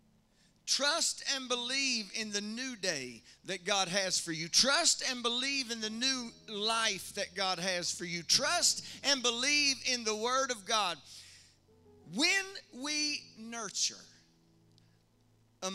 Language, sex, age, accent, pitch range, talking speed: English, male, 40-59, American, 175-255 Hz, 135 wpm